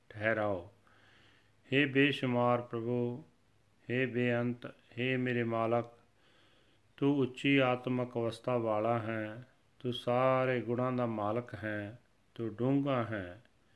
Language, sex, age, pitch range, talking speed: Punjabi, male, 40-59, 110-130 Hz, 110 wpm